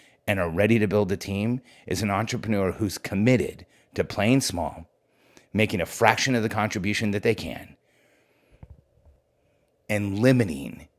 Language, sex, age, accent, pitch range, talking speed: English, male, 30-49, American, 85-110 Hz, 140 wpm